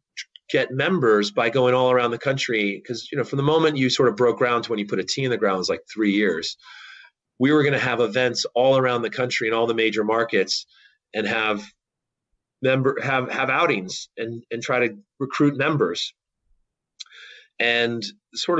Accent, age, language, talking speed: American, 30-49, English, 195 wpm